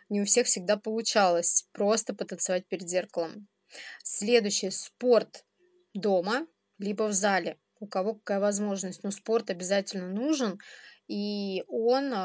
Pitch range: 190-235 Hz